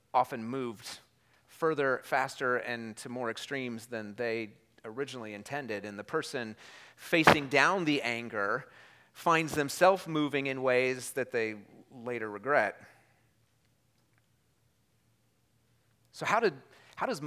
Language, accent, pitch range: English, American, 115-135 Hz